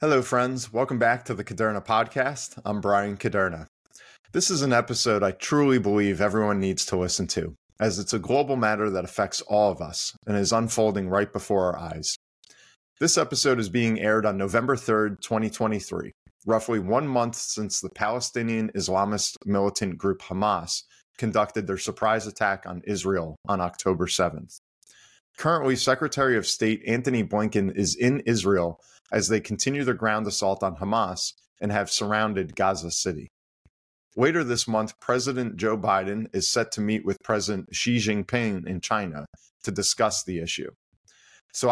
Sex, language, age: male, English, 30-49